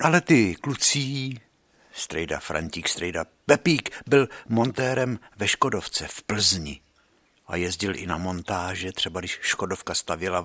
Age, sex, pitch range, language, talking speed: 60-79, male, 95-120 Hz, Czech, 125 wpm